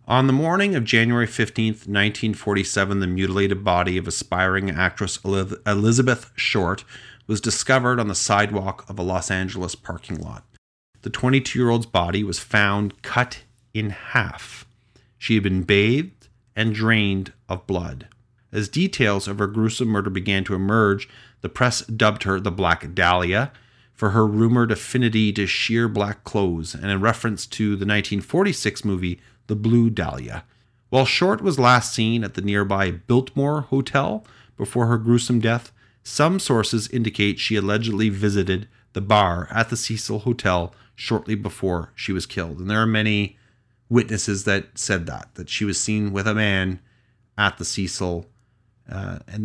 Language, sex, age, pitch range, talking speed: English, male, 30-49, 100-120 Hz, 155 wpm